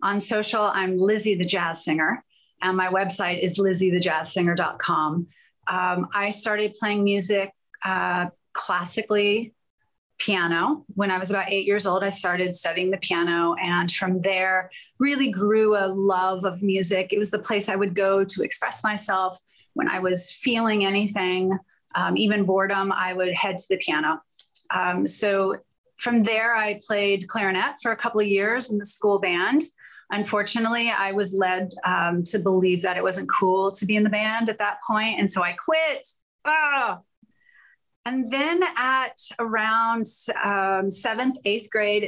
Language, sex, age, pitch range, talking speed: English, female, 30-49, 185-215 Hz, 160 wpm